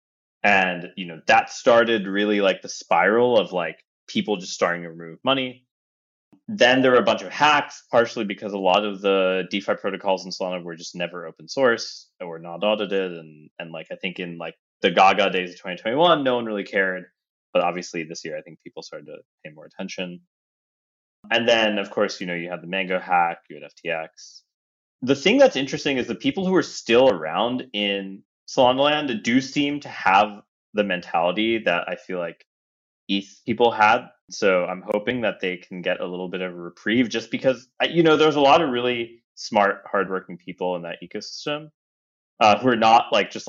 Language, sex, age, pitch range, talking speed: English, male, 20-39, 90-115 Hz, 200 wpm